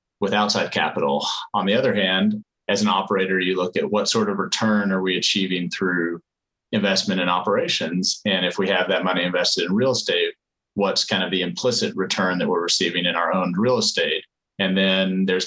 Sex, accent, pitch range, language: male, American, 95-105 Hz, English